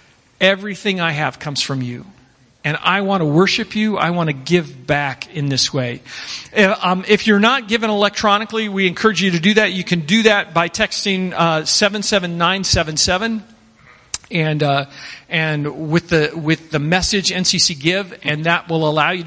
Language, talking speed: English, 185 wpm